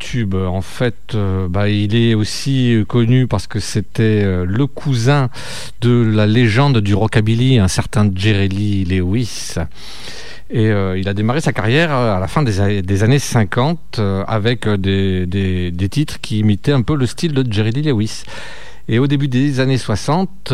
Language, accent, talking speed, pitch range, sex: French, French, 170 wpm, 100-130 Hz, male